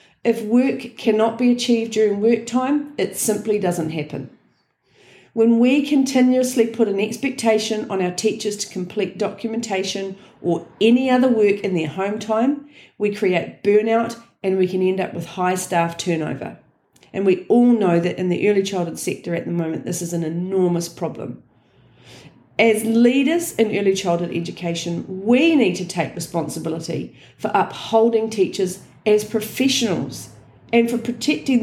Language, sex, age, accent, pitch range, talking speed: English, female, 40-59, Australian, 190-235 Hz, 155 wpm